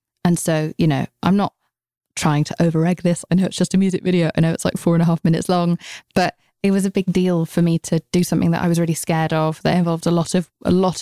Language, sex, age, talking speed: English, female, 20-39, 280 wpm